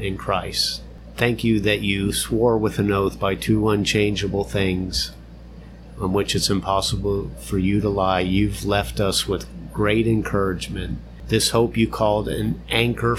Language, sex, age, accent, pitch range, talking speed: English, male, 50-69, American, 95-110 Hz, 155 wpm